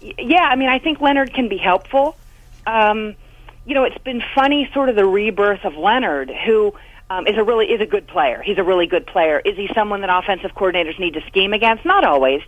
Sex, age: female, 40-59